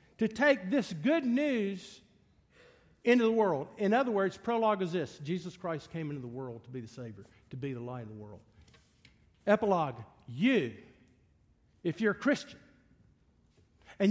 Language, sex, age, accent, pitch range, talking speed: English, male, 50-69, American, 120-200 Hz, 160 wpm